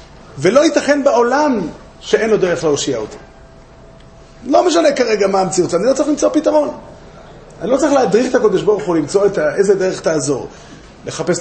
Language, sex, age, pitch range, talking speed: Hebrew, male, 30-49, 170-260 Hz, 165 wpm